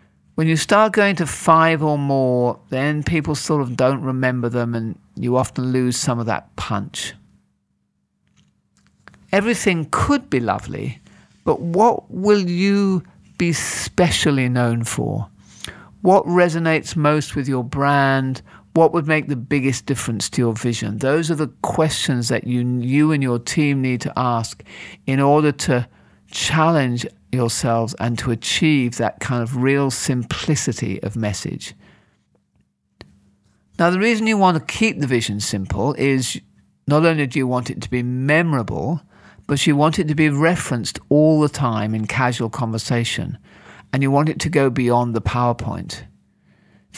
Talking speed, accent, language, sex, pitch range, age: 155 wpm, British, English, male, 120-155 Hz, 50-69